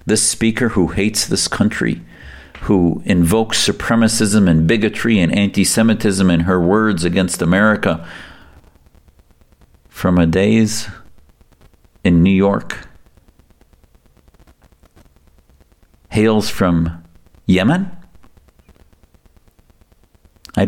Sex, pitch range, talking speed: male, 85-110 Hz, 85 wpm